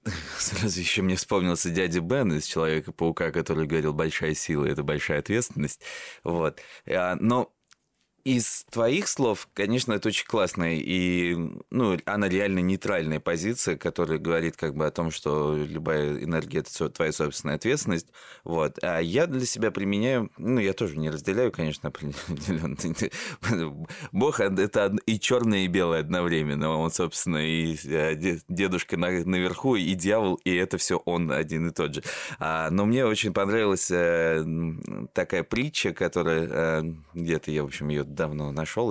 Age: 20-39